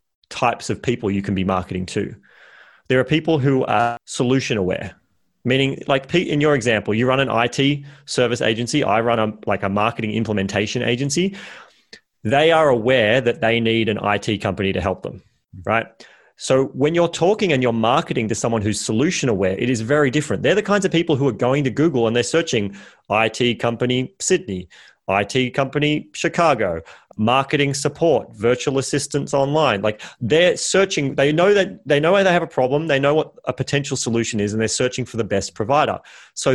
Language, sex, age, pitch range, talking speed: English, male, 30-49, 115-145 Hz, 190 wpm